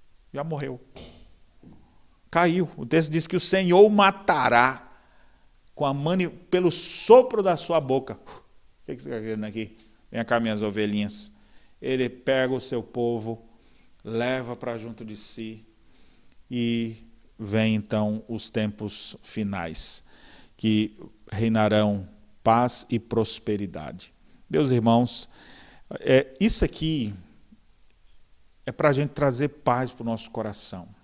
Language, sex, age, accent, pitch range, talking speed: Portuguese, male, 40-59, Brazilian, 110-145 Hz, 125 wpm